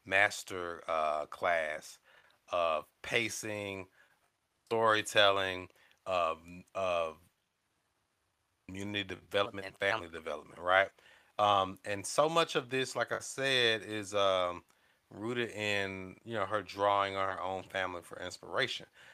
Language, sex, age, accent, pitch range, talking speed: English, male, 30-49, American, 90-115 Hz, 115 wpm